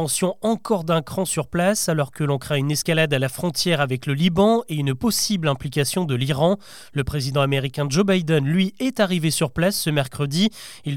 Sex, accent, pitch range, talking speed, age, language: male, French, 150-200 Hz, 195 wpm, 30-49, French